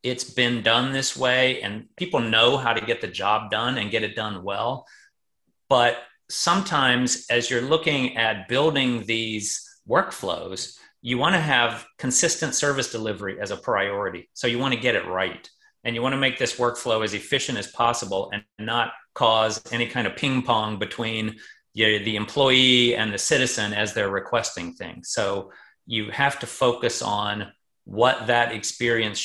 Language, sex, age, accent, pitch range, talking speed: English, male, 40-59, American, 110-130 Hz, 170 wpm